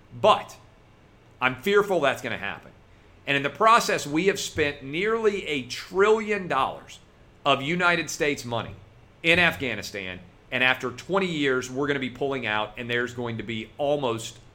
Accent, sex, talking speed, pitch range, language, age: American, male, 165 wpm, 110-145 Hz, English, 40-59